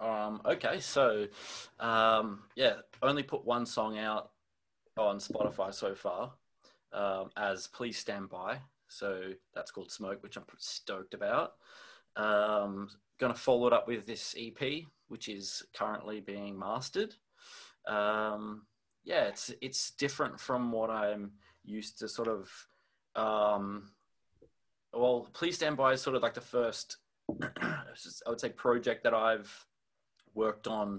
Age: 20-39